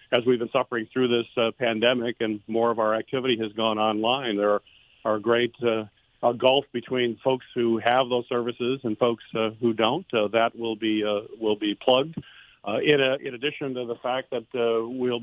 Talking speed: 210 wpm